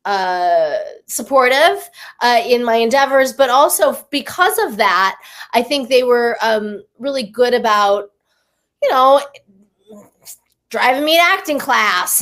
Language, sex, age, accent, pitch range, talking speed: English, female, 20-39, American, 200-255 Hz, 130 wpm